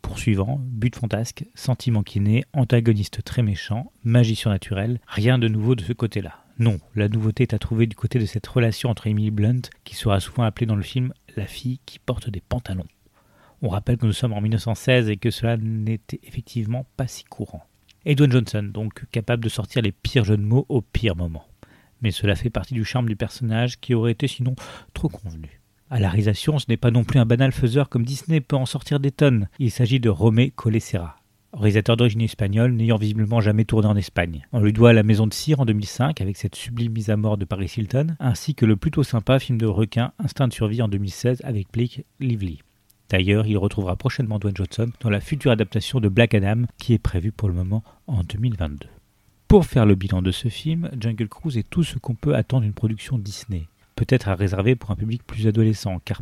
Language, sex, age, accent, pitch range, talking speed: French, male, 40-59, French, 105-125 Hz, 215 wpm